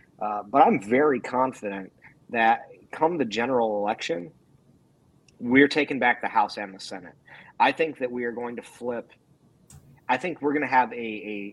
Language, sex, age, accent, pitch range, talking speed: English, male, 30-49, American, 105-130 Hz, 175 wpm